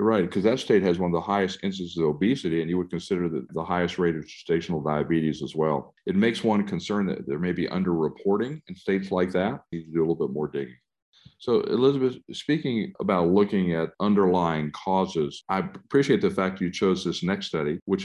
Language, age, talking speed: English, 50-69, 215 wpm